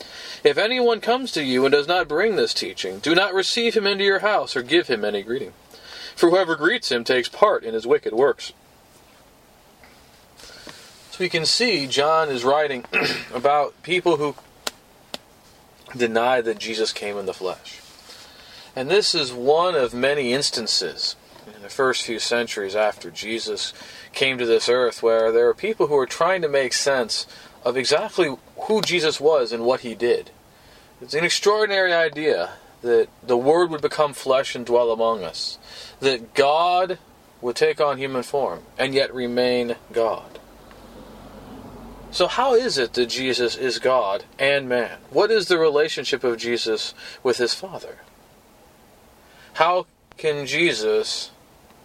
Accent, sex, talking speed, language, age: American, male, 155 wpm, English, 40-59